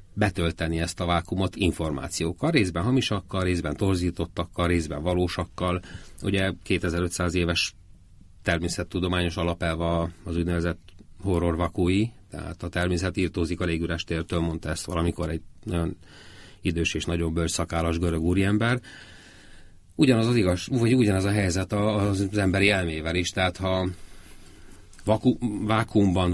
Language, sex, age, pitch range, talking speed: Hungarian, male, 30-49, 85-95 Hz, 120 wpm